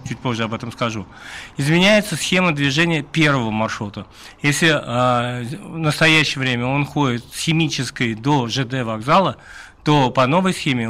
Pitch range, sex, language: 125-150 Hz, male, Russian